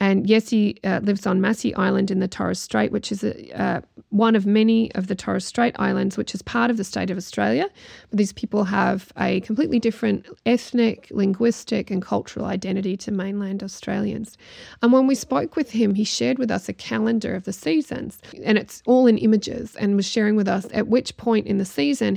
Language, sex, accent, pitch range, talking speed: Danish, female, Australian, 195-225 Hz, 210 wpm